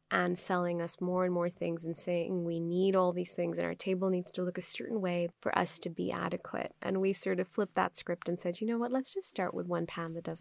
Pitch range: 175-205 Hz